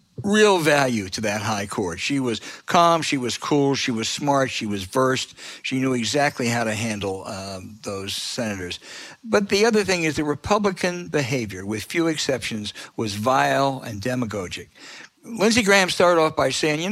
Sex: male